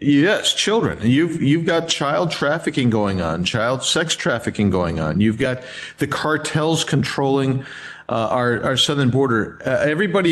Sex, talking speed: male, 150 wpm